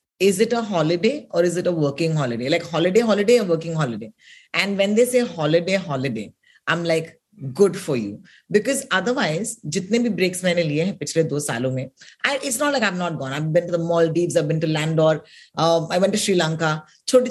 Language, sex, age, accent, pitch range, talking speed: Hindi, female, 30-49, native, 165-210 Hz, 220 wpm